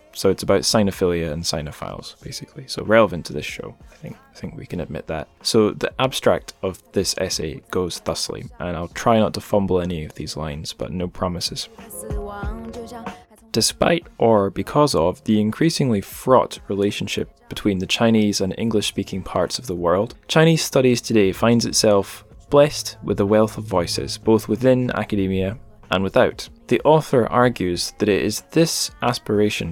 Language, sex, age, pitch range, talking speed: English, male, 10-29, 95-115 Hz, 165 wpm